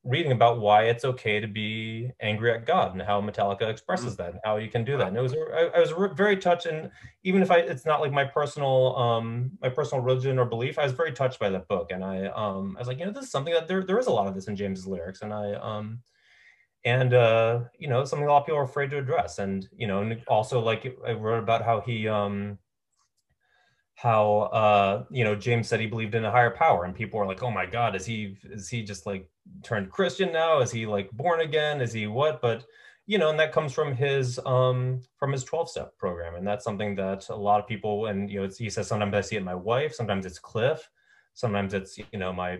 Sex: male